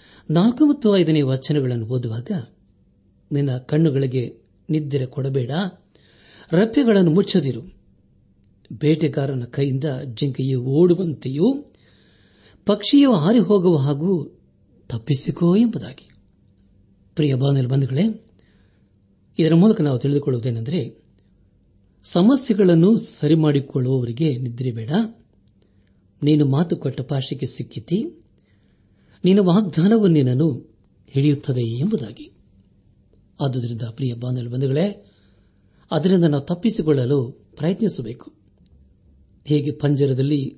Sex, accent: male, native